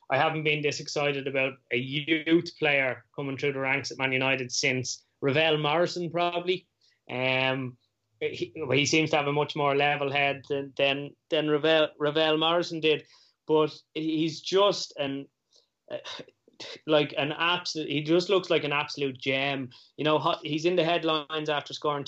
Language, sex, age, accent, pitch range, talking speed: English, male, 20-39, Irish, 130-155 Hz, 165 wpm